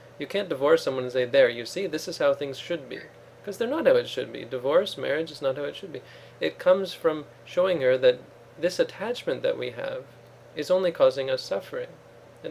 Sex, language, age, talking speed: male, English, 20-39, 225 wpm